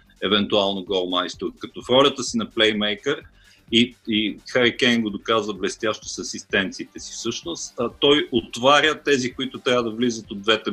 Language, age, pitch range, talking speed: Bulgarian, 50-69, 110-135 Hz, 155 wpm